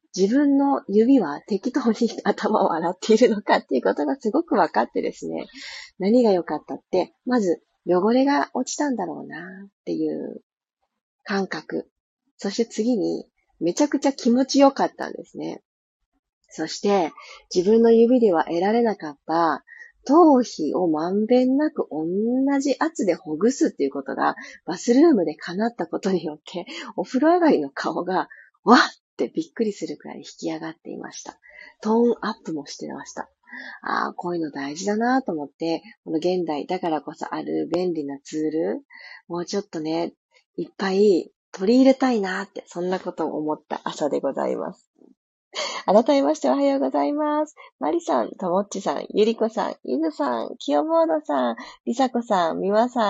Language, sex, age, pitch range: Japanese, female, 40-59, 180-295 Hz